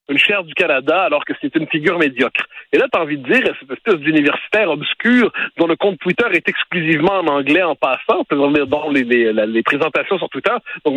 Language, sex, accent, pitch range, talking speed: French, male, French, 160-220 Hz, 220 wpm